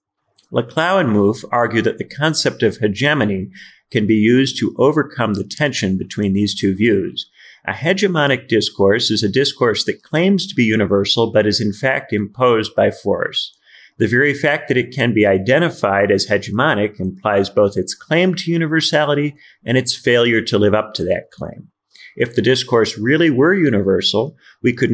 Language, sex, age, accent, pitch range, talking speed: English, male, 40-59, American, 100-130 Hz, 170 wpm